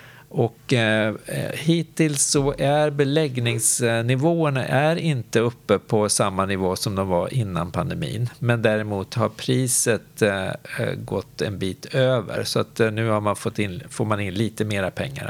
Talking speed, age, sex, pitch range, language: 120 wpm, 50-69, male, 110-145 Hz, Swedish